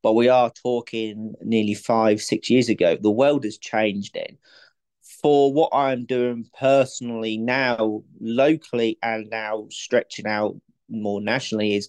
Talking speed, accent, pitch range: 140 wpm, British, 110-130 Hz